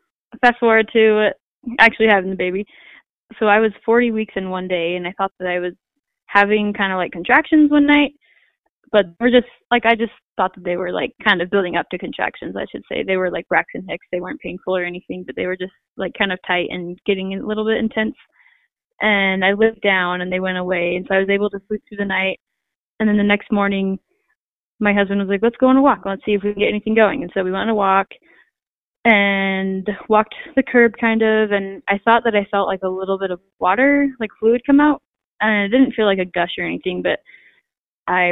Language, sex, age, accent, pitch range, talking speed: English, female, 10-29, American, 185-225 Hz, 240 wpm